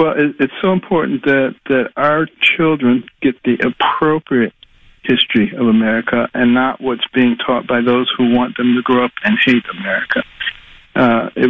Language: English